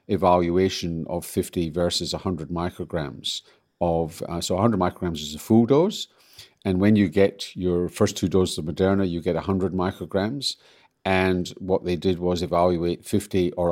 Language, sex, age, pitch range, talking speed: English, male, 50-69, 85-100 Hz, 160 wpm